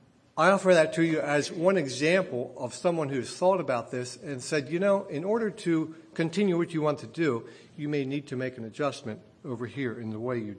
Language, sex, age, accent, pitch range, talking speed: English, male, 60-79, American, 140-195 Hz, 225 wpm